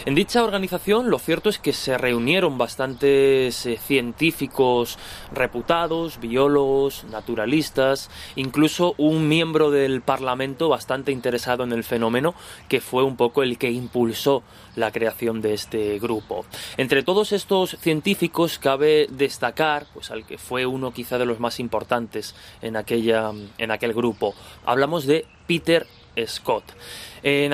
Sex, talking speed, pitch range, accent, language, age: male, 135 wpm, 115-145 Hz, Spanish, Spanish, 20-39